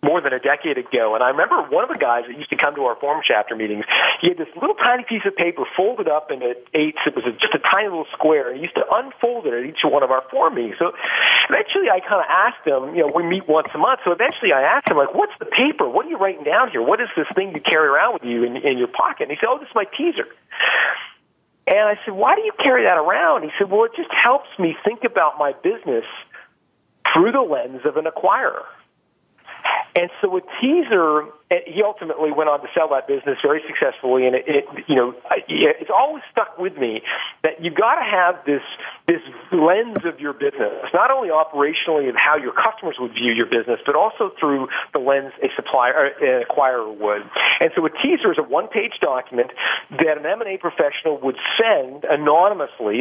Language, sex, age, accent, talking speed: English, male, 40-59, American, 225 wpm